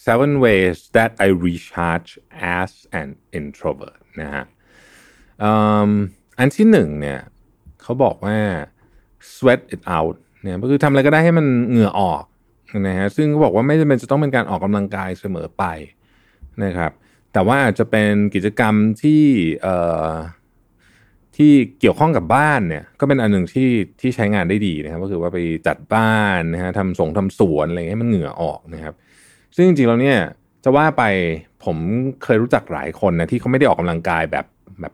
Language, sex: Thai, male